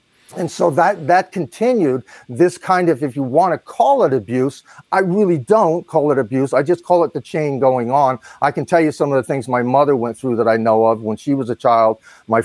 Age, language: 50-69, English